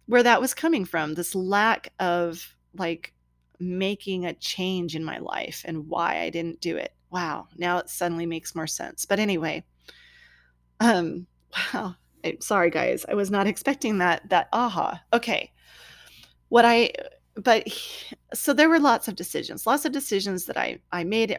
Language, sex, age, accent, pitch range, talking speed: English, female, 30-49, American, 165-220 Hz, 165 wpm